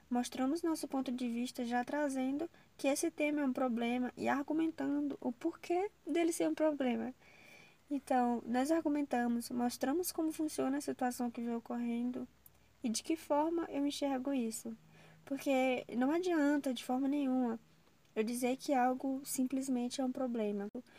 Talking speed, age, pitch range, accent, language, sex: 155 wpm, 10-29, 235-280 Hz, Brazilian, Portuguese, female